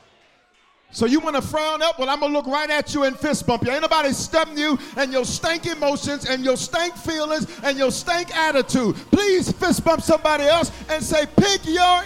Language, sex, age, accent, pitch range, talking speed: English, male, 50-69, American, 210-310 Hz, 215 wpm